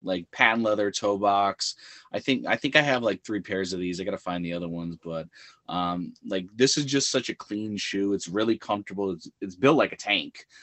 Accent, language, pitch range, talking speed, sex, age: American, English, 90-105 Hz, 235 wpm, male, 20-39